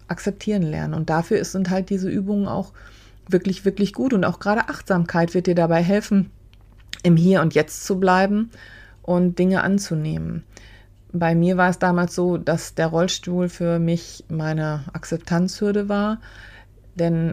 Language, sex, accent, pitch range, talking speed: German, female, German, 155-195 Hz, 150 wpm